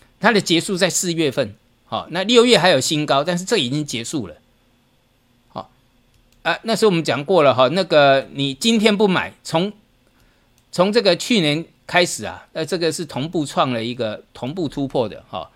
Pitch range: 125-185 Hz